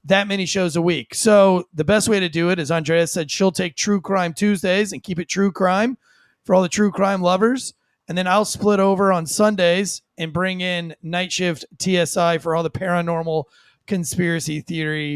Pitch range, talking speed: 155-205 Hz, 200 wpm